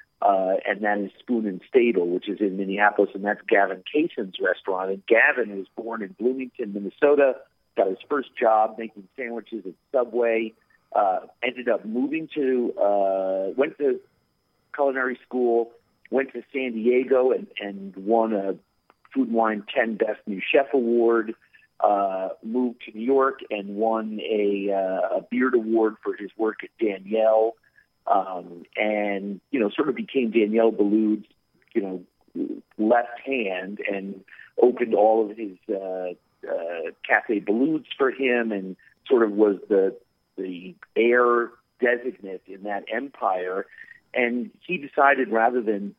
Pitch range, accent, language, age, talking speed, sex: 100-125 Hz, American, English, 50-69, 145 wpm, male